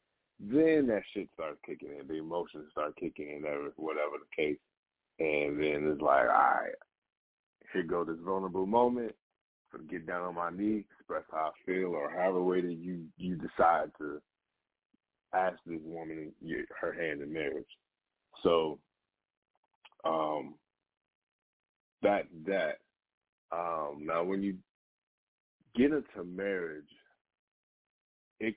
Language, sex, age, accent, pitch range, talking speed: English, male, 30-49, American, 85-110 Hz, 140 wpm